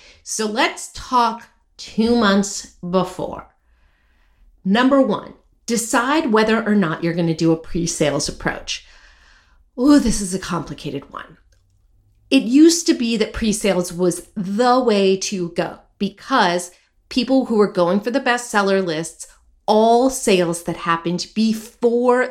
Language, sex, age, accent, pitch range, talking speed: English, female, 40-59, American, 175-235 Hz, 135 wpm